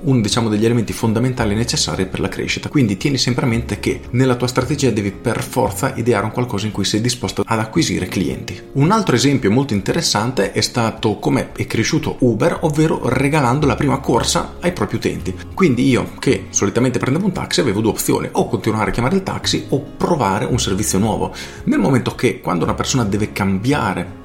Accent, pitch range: native, 105-130 Hz